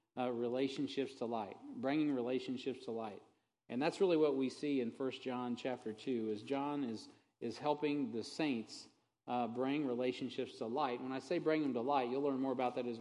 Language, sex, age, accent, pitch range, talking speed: English, male, 40-59, American, 115-140 Hz, 205 wpm